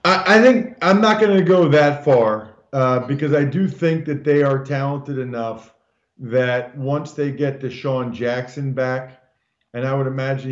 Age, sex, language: 40-59, male, English